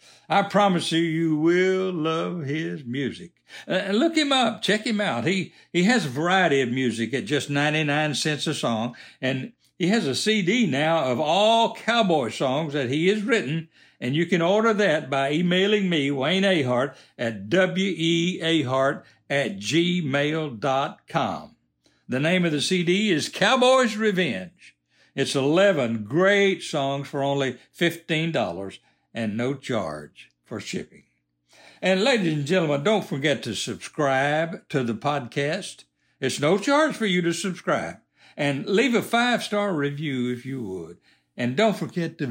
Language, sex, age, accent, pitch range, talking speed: English, male, 60-79, American, 130-185 Hz, 150 wpm